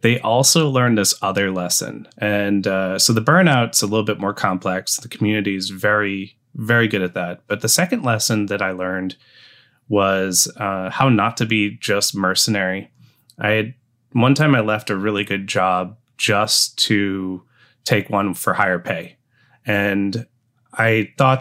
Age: 30-49